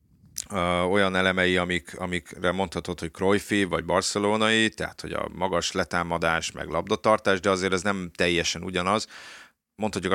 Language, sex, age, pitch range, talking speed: Hungarian, male, 30-49, 85-100 Hz, 140 wpm